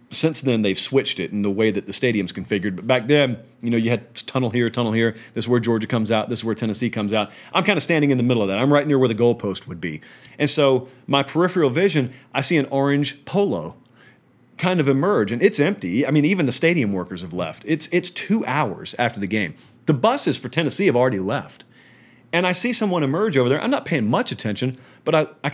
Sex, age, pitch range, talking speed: male, 40-59, 120-175 Hz, 245 wpm